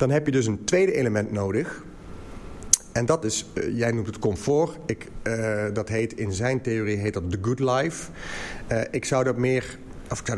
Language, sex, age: Dutch, male, 40-59